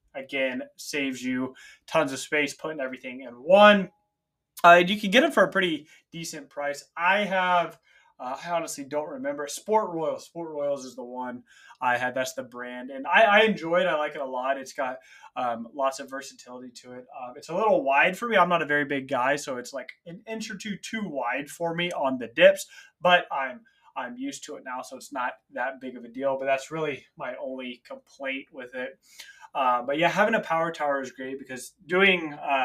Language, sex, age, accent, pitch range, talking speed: English, male, 20-39, American, 130-180 Hz, 220 wpm